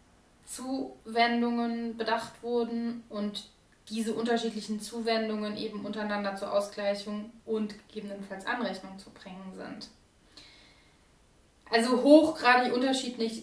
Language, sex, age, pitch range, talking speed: German, female, 20-39, 200-230 Hz, 85 wpm